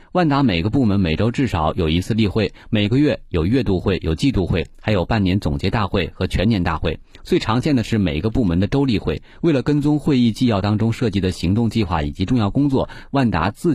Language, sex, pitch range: Chinese, male, 85-120 Hz